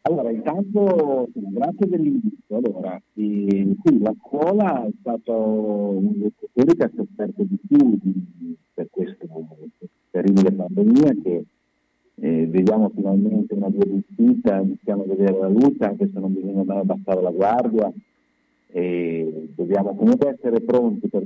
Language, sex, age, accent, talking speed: Italian, male, 50-69, native, 145 wpm